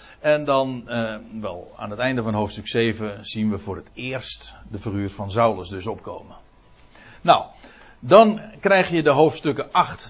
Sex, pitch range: male, 110-140 Hz